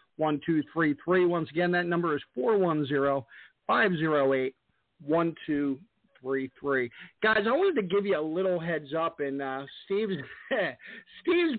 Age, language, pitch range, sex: 50-69, English, 165-205 Hz, male